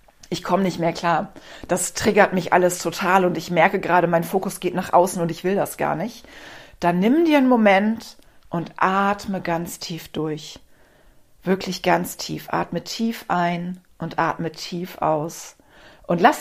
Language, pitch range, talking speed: German, 170-200 Hz, 170 wpm